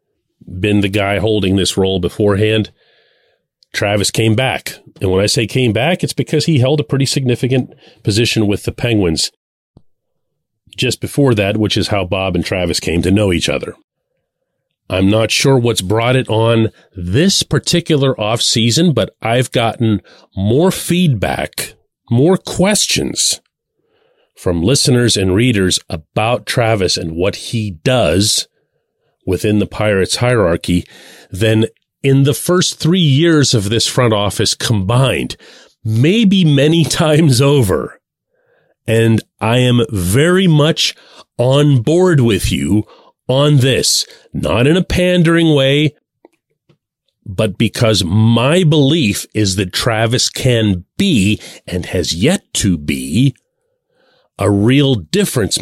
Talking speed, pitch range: 130 wpm, 105-145 Hz